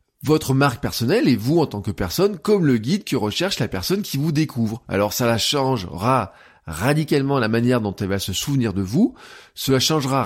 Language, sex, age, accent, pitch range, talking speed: French, male, 20-39, French, 125-180 Hz, 205 wpm